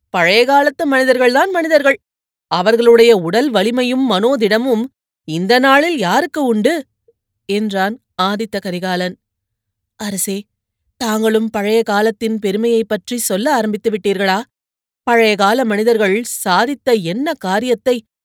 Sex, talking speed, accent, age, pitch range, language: female, 95 wpm, native, 30-49, 195-260 Hz, Tamil